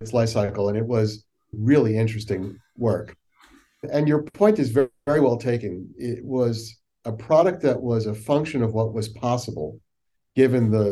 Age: 50-69